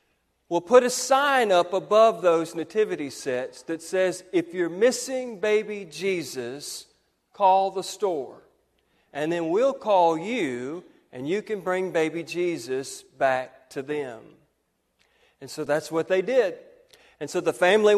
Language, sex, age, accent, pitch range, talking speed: English, male, 40-59, American, 155-210 Hz, 145 wpm